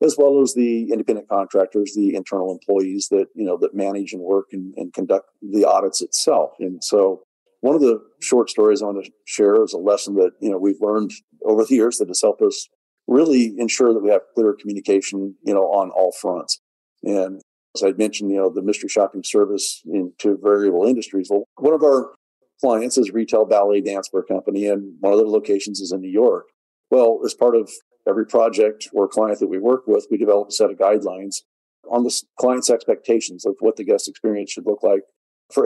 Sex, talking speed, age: male, 210 wpm, 40-59